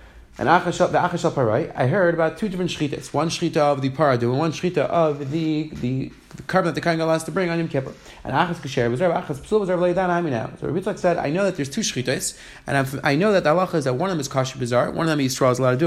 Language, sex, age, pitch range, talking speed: English, male, 30-49, 130-165 Hz, 270 wpm